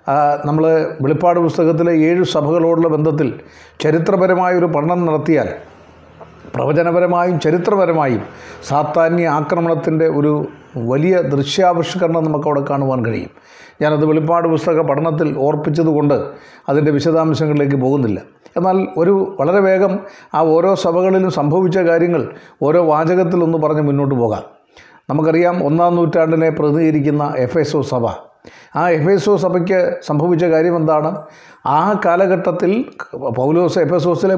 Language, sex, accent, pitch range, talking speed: Malayalam, male, native, 155-180 Hz, 110 wpm